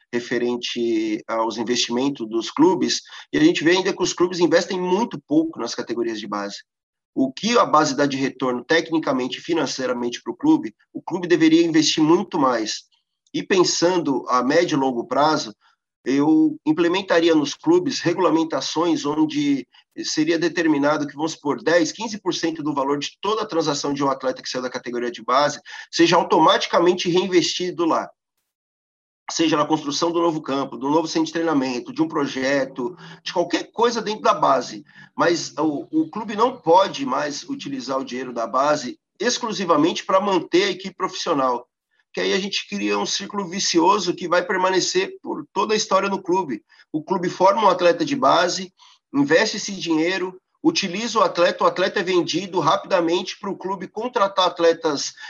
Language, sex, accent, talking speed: Portuguese, male, Brazilian, 170 wpm